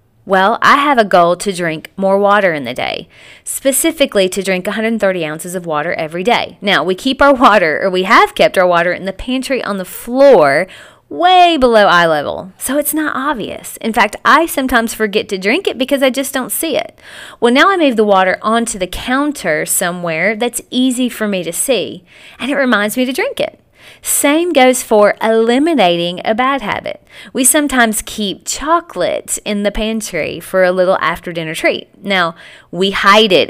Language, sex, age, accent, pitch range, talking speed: English, female, 30-49, American, 185-260 Hz, 190 wpm